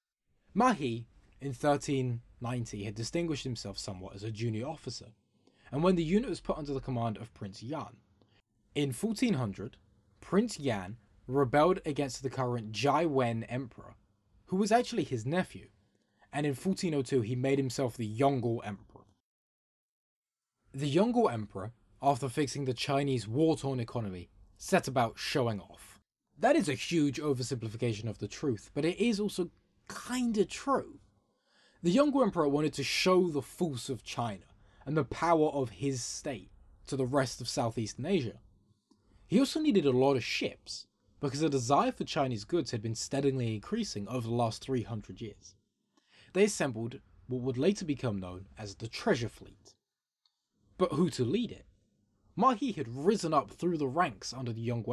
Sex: male